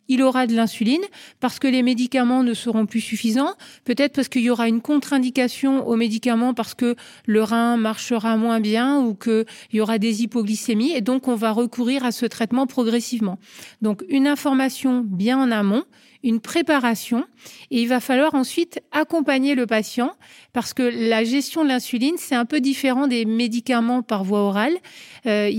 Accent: French